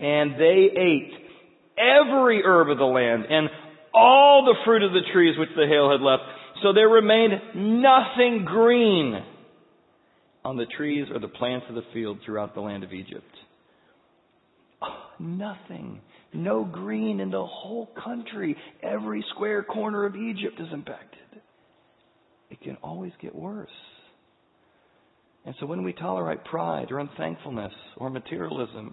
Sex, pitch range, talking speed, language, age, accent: male, 130-180 Hz, 140 wpm, English, 40-59, American